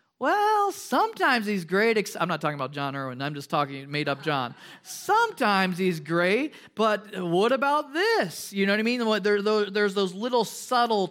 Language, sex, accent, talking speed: English, male, American, 175 wpm